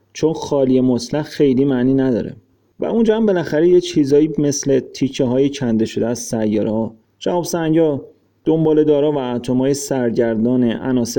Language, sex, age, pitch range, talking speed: Persian, male, 30-49, 120-155 Hz, 150 wpm